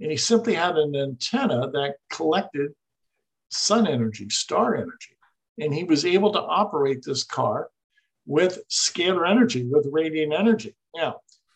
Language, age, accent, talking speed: English, 50-69, American, 140 wpm